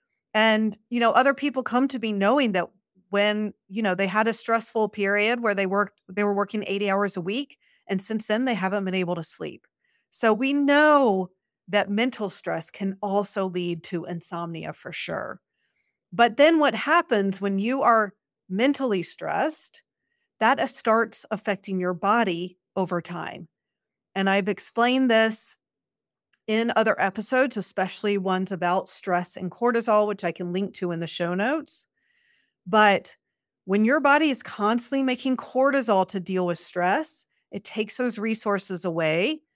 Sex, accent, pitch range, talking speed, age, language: female, American, 185-235 Hz, 160 wpm, 40-59, English